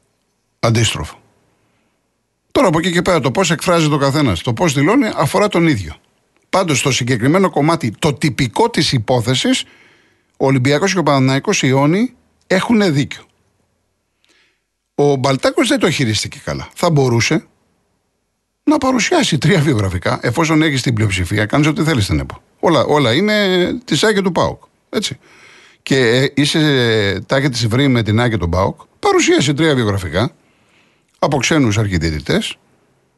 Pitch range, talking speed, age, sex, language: 120-185 Hz, 135 wpm, 50-69, male, Greek